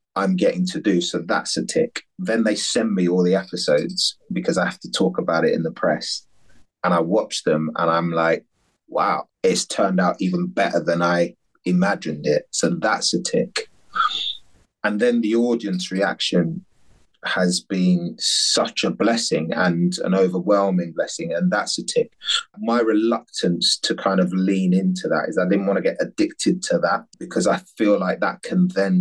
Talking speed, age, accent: 180 wpm, 30-49, British